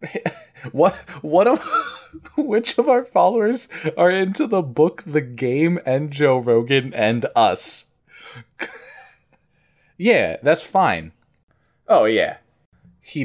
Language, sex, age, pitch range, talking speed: English, male, 20-39, 105-155 Hz, 110 wpm